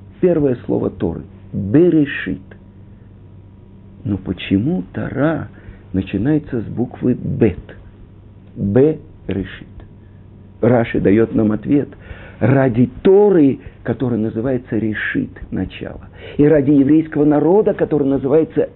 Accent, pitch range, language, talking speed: native, 95-140 Hz, Russian, 90 wpm